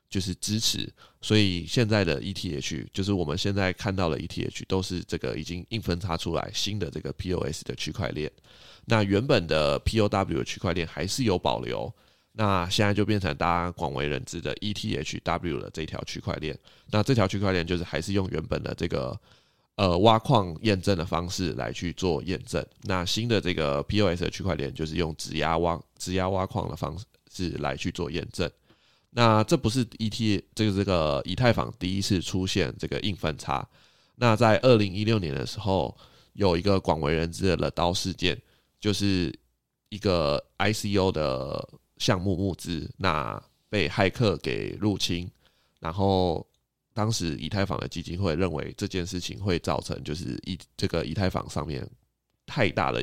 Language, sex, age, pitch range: Chinese, male, 20-39, 85-105 Hz